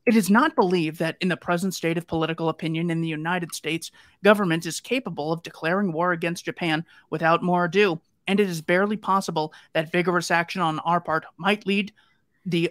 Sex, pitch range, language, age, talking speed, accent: male, 160-185 Hz, English, 30-49, 195 wpm, American